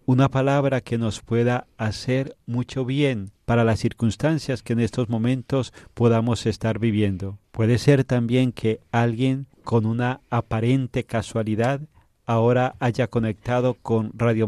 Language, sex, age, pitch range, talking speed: Spanish, male, 40-59, 110-125 Hz, 135 wpm